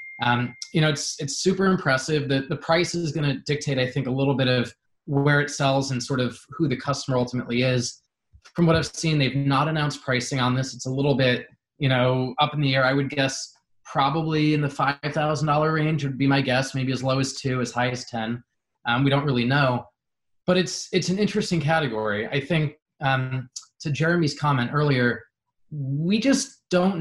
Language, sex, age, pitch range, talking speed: English, male, 20-39, 130-155 Hz, 225 wpm